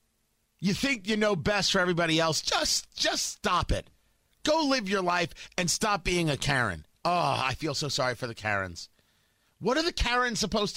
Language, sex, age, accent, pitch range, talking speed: English, male, 40-59, American, 145-245 Hz, 190 wpm